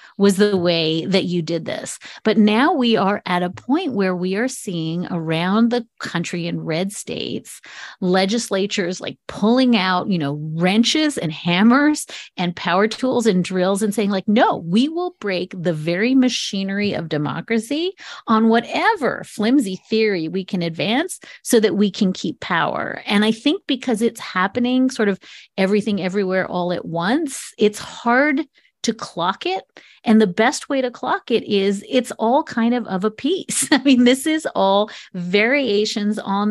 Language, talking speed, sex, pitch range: English, 170 wpm, female, 185-250 Hz